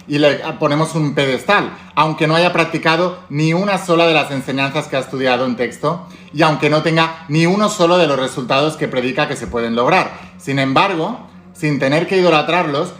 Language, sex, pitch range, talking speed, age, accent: Spanish, male, 135-175 Hz, 195 wpm, 30-49, Spanish